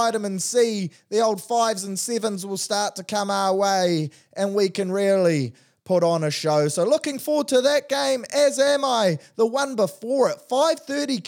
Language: English